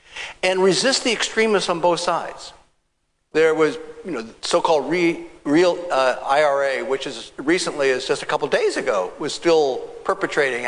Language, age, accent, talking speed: English, 60-79, American, 170 wpm